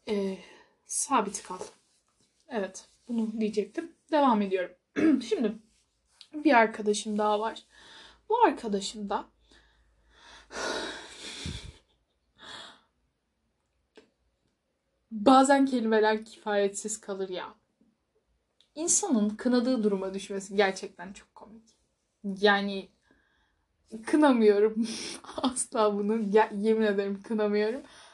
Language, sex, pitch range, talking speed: Turkish, female, 195-240 Hz, 70 wpm